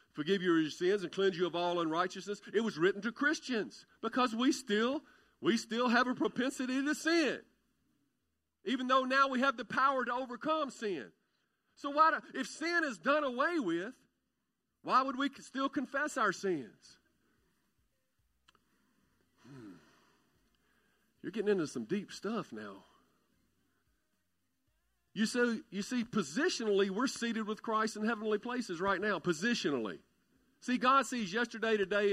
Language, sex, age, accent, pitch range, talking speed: English, male, 50-69, American, 195-260 Hz, 150 wpm